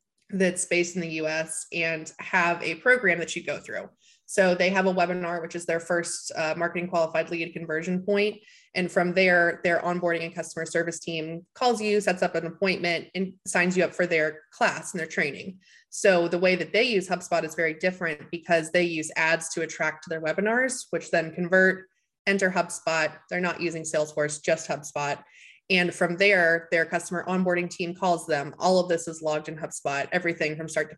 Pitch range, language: 165-190 Hz, English